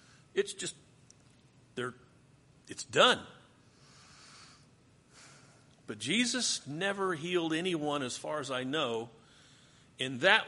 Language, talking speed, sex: English, 95 wpm, male